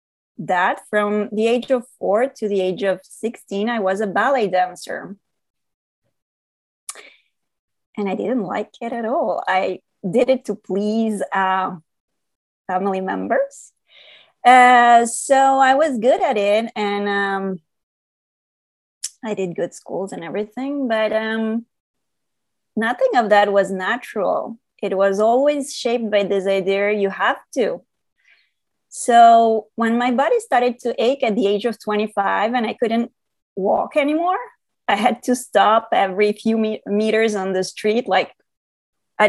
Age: 20-39